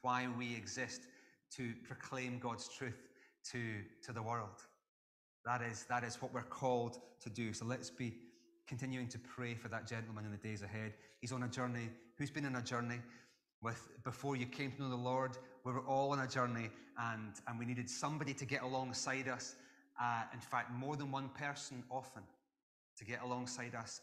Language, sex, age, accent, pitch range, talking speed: English, male, 30-49, British, 115-150 Hz, 190 wpm